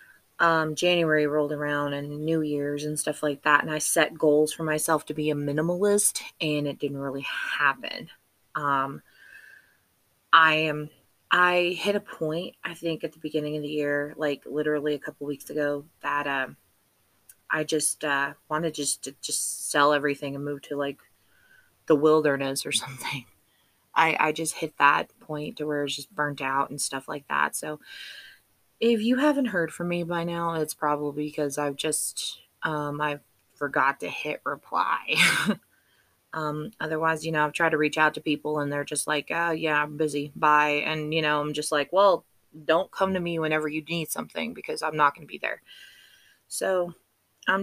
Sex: female